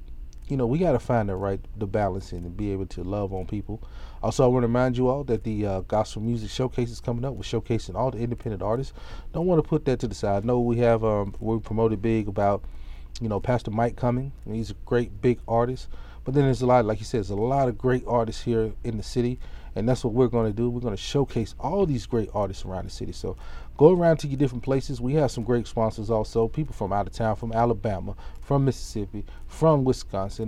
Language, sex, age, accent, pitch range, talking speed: English, male, 30-49, American, 105-130 Hz, 250 wpm